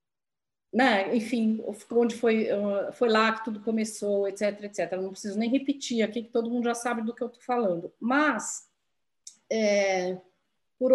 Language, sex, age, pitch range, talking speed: Portuguese, female, 40-59, 200-265 Hz, 155 wpm